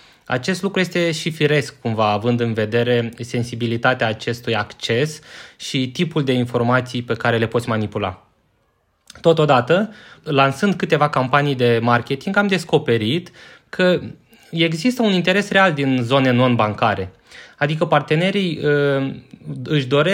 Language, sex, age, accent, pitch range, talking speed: Romanian, male, 20-39, native, 120-170 Hz, 115 wpm